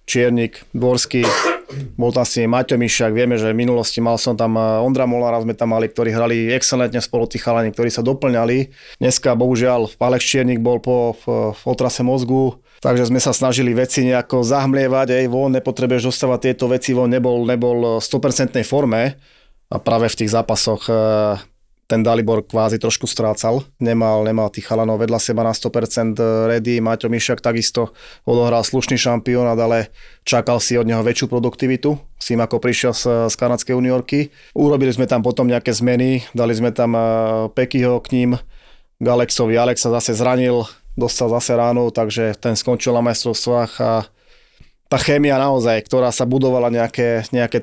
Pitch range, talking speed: 115-125 Hz, 160 wpm